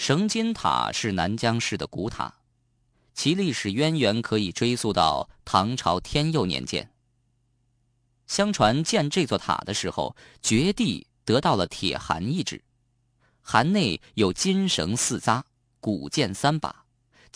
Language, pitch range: Chinese, 110-140 Hz